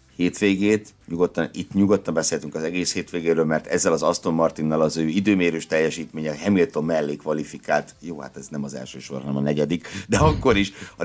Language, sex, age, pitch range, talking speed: Hungarian, male, 60-79, 80-105 Hz, 180 wpm